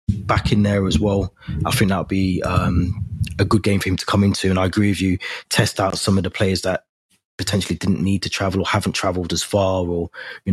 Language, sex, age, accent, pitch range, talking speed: English, male, 20-39, British, 95-105 Hz, 245 wpm